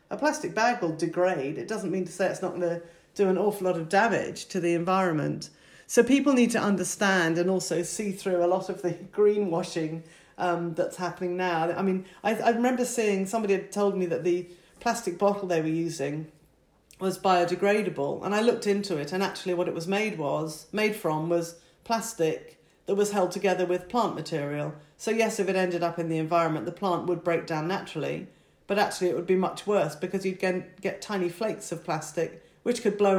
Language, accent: English, British